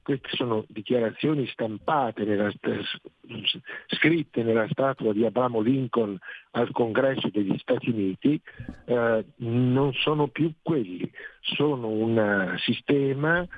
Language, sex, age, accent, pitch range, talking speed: Italian, male, 50-69, native, 110-140 Hz, 105 wpm